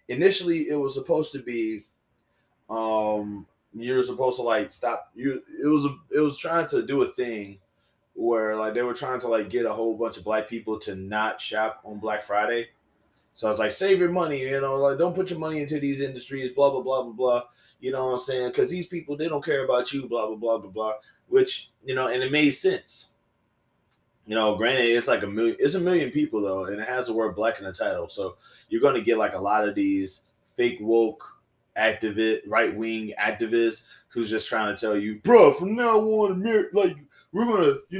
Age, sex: 20-39, male